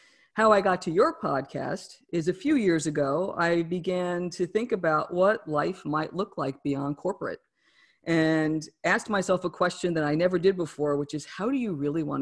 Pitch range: 150-185 Hz